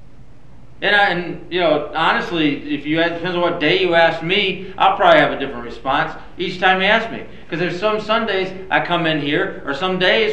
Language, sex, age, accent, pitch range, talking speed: English, male, 40-59, American, 165-210 Hz, 220 wpm